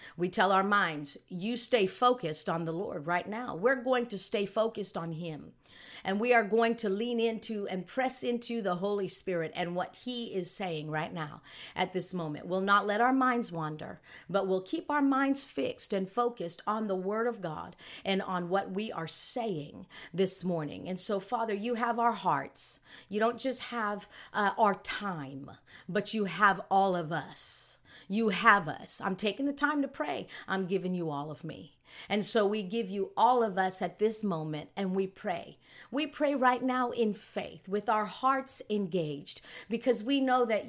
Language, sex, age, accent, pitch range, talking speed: English, female, 50-69, American, 185-245 Hz, 195 wpm